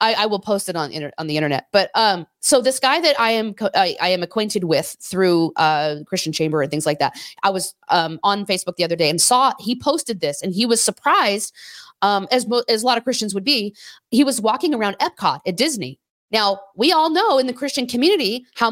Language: English